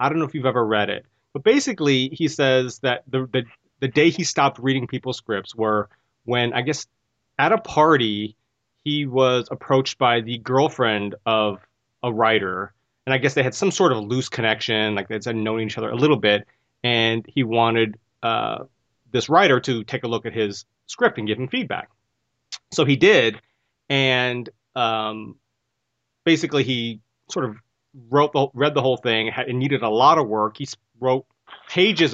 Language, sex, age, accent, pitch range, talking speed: English, male, 30-49, American, 110-135 Hz, 180 wpm